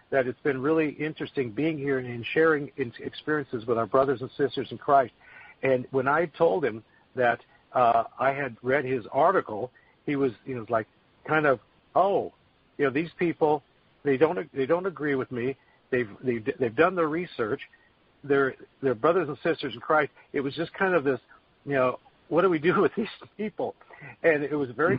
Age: 50-69